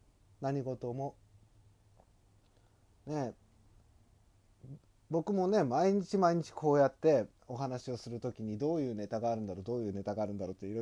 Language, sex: Japanese, male